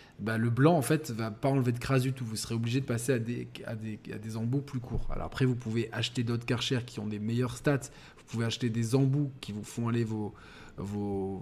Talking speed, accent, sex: 270 wpm, French, male